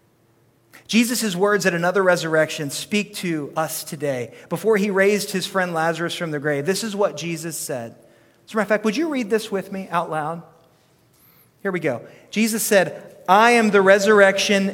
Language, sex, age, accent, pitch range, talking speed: English, male, 40-59, American, 170-230 Hz, 185 wpm